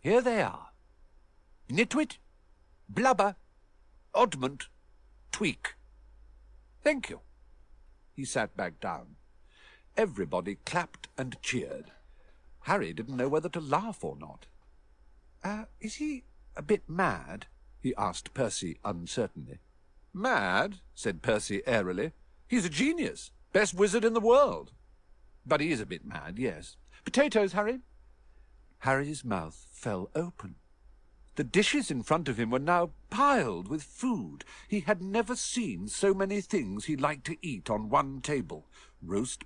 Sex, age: male, 60-79